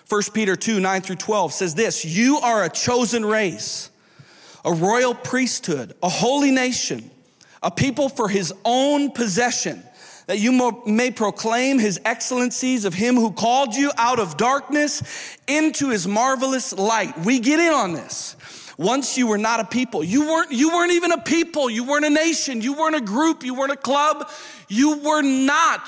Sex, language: male, English